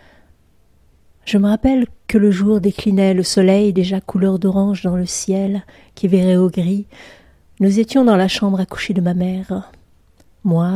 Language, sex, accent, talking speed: French, female, French, 165 wpm